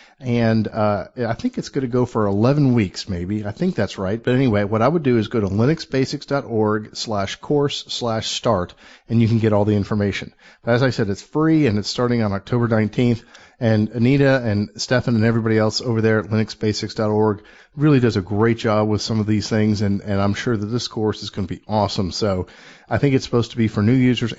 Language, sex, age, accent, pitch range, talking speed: English, male, 50-69, American, 105-120 Hz, 225 wpm